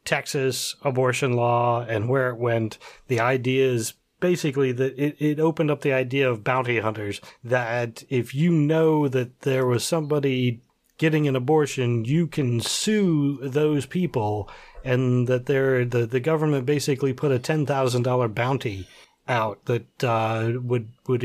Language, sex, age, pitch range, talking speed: English, male, 40-59, 125-180 Hz, 150 wpm